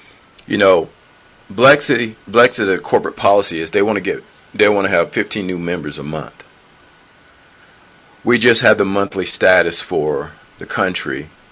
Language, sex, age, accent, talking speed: English, male, 40-59, American, 155 wpm